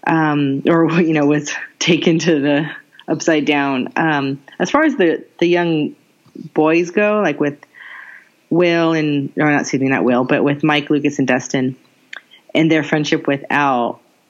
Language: English